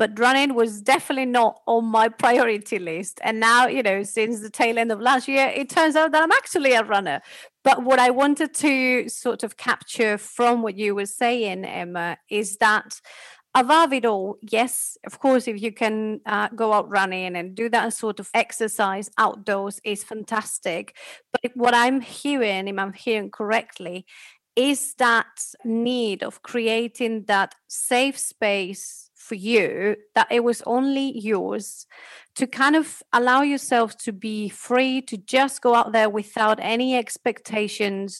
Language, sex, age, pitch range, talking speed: English, female, 30-49, 210-250 Hz, 165 wpm